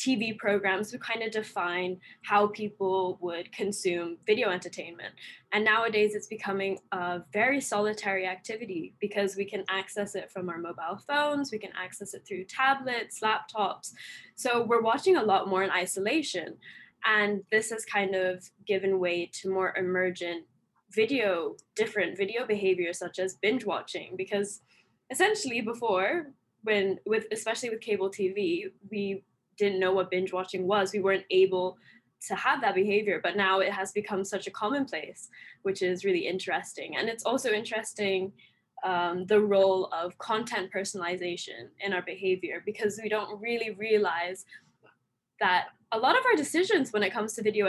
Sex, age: female, 10-29